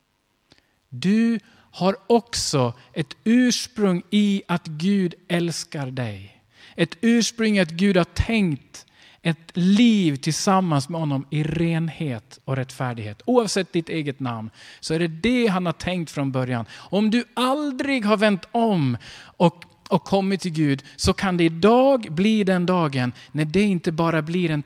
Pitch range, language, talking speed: 125-185 Hz, Swedish, 150 wpm